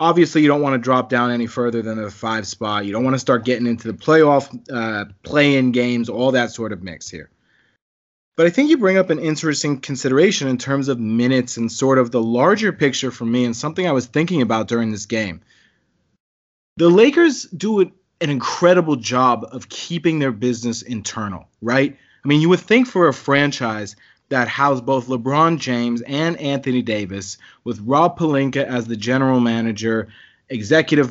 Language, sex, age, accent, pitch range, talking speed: English, male, 30-49, American, 115-145 Hz, 185 wpm